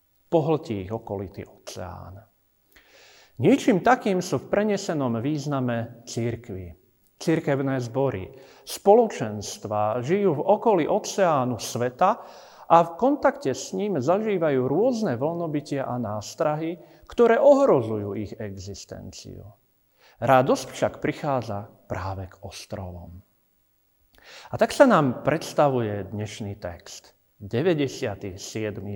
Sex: male